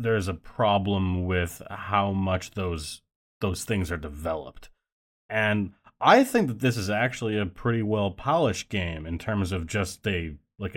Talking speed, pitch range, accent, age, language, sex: 160 wpm, 95-120 Hz, American, 30-49, English, male